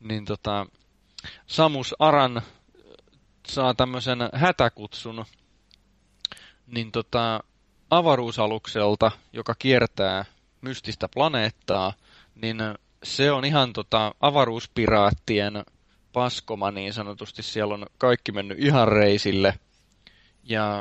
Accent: native